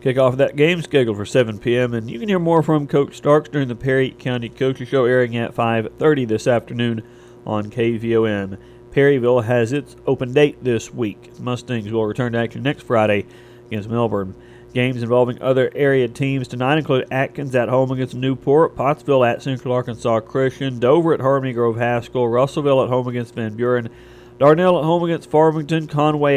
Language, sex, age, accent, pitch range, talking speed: English, male, 40-59, American, 120-135 Hz, 180 wpm